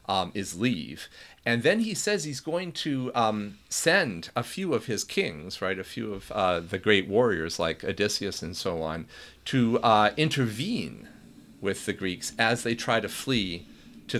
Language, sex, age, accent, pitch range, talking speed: English, male, 40-59, American, 105-145 Hz, 180 wpm